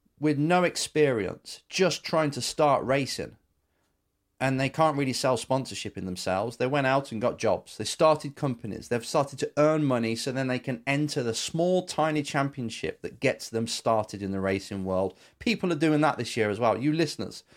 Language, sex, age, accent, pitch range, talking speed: English, male, 30-49, British, 115-155 Hz, 195 wpm